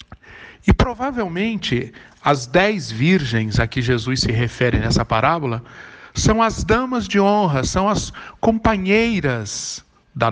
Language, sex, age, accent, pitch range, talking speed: Portuguese, male, 60-79, Brazilian, 120-165 Hz, 120 wpm